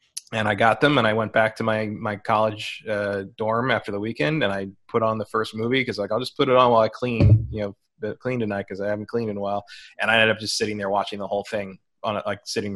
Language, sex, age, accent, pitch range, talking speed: English, male, 20-39, American, 105-130 Hz, 285 wpm